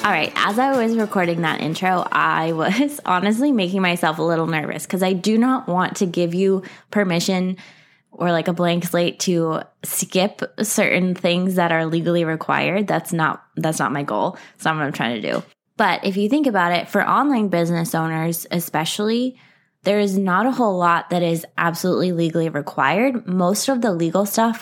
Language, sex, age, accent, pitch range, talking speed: English, female, 20-39, American, 165-195 Hz, 190 wpm